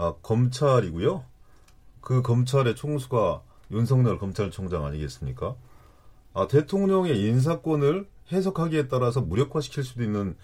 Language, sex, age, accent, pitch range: Korean, male, 40-59, native, 95-145 Hz